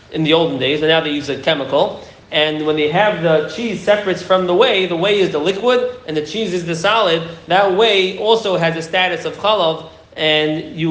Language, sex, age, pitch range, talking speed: English, male, 30-49, 155-195 Hz, 225 wpm